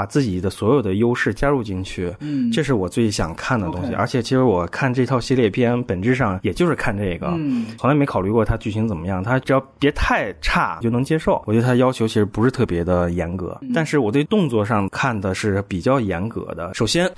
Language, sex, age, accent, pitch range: Chinese, male, 20-39, native, 105-145 Hz